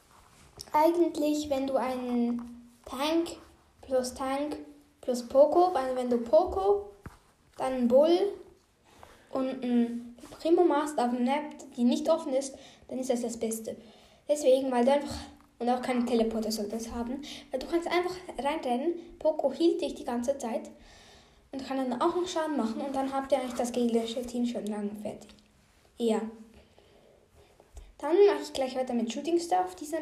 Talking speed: 160 wpm